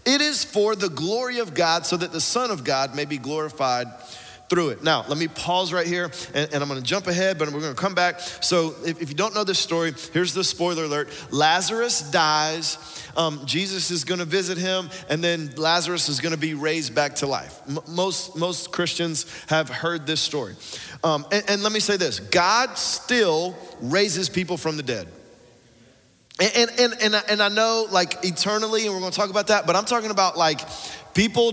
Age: 30-49